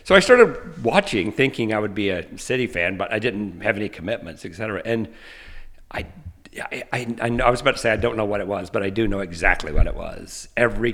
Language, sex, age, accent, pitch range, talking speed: English, male, 50-69, American, 95-120 Hz, 245 wpm